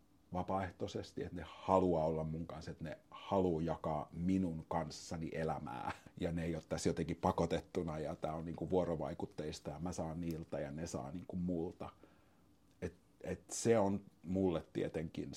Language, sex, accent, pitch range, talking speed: Finnish, male, native, 80-100 Hz, 160 wpm